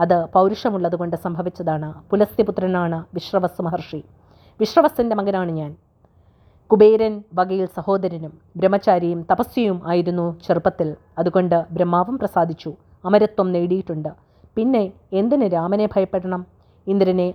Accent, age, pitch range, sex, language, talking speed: Indian, 30-49, 175-205 Hz, female, English, 85 wpm